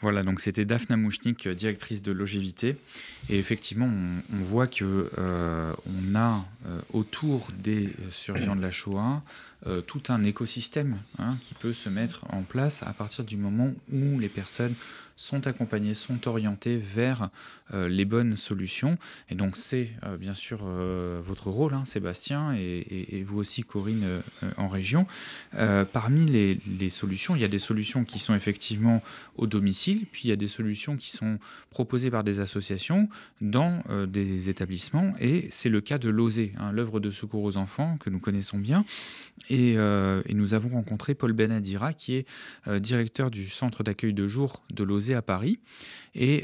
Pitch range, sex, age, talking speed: 95-120 Hz, male, 20-39, 180 wpm